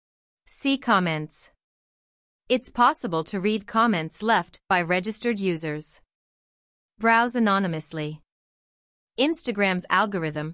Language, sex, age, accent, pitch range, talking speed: English, female, 30-49, American, 170-235 Hz, 85 wpm